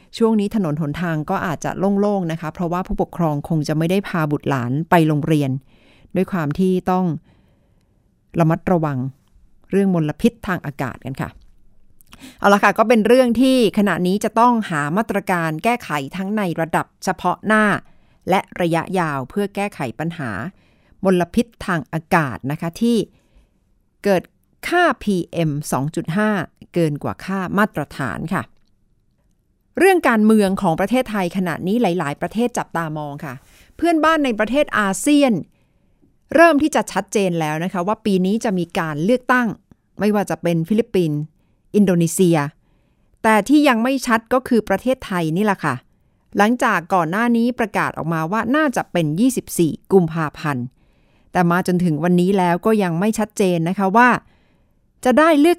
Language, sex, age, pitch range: Thai, female, 60-79, 160-220 Hz